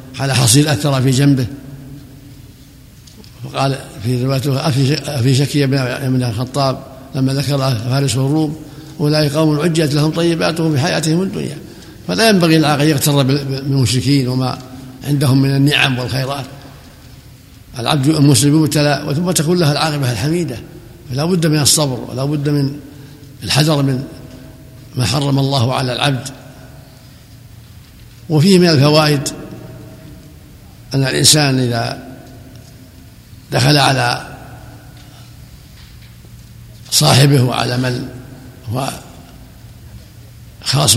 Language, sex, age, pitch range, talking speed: Arabic, male, 60-79, 125-150 Hz, 100 wpm